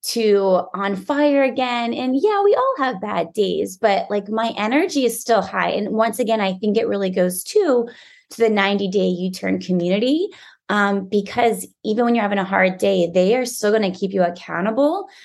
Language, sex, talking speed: English, female, 190 wpm